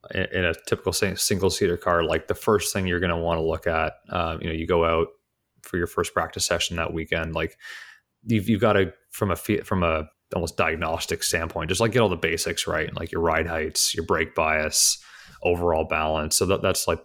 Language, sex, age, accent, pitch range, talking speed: English, male, 30-49, American, 80-90 Hz, 220 wpm